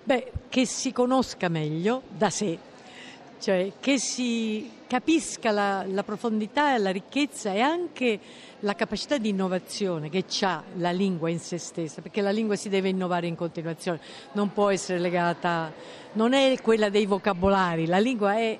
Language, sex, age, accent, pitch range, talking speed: Italian, female, 50-69, native, 190-245 Hz, 160 wpm